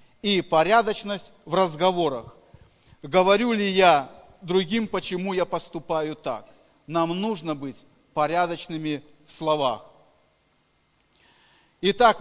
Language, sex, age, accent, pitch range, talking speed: Russian, male, 40-59, native, 145-195 Hz, 95 wpm